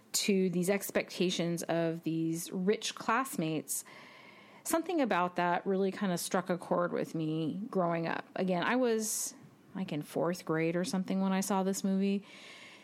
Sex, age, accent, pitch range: female, 30-49, American, 165-205 Hz